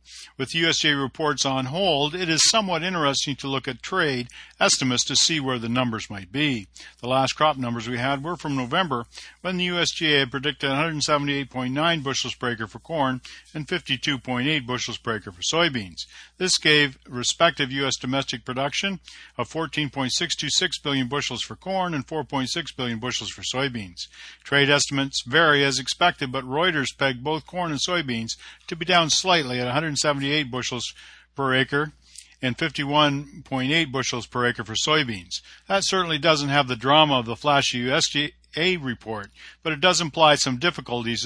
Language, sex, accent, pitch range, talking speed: English, male, American, 125-155 Hz, 160 wpm